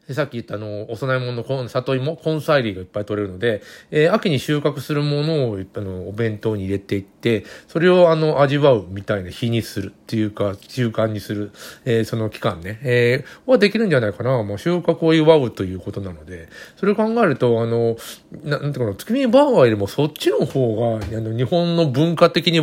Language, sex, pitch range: Japanese, male, 105-145 Hz